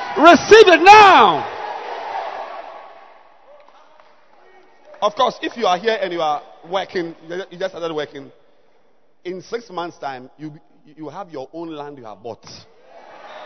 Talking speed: 135 wpm